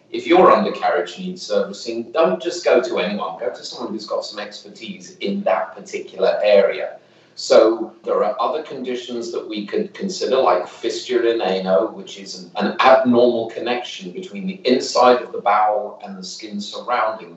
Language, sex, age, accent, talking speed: English, male, 40-59, British, 165 wpm